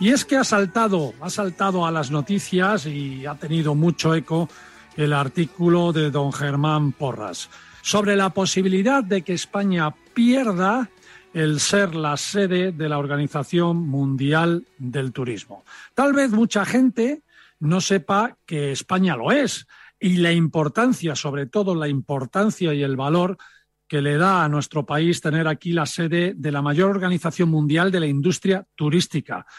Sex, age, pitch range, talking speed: male, 50-69, 150-195 Hz, 155 wpm